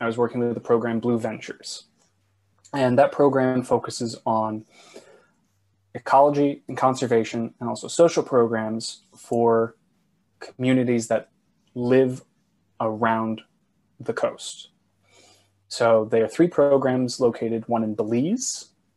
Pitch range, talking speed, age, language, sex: 110-130 Hz, 115 wpm, 20-39, English, male